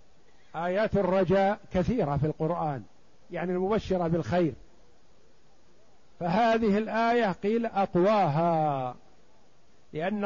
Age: 50-69